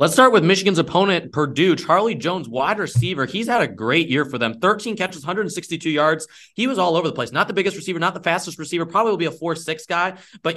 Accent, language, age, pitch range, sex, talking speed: American, English, 20-39, 150-200 Hz, male, 240 wpm